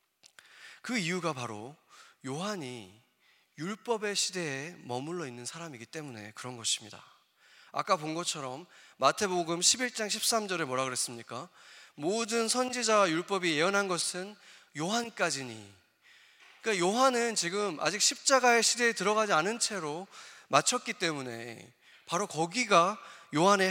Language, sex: English, male